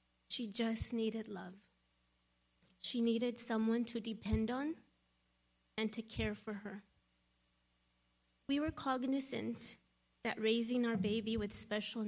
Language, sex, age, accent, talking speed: English, female, 30-49, American, 120 wpm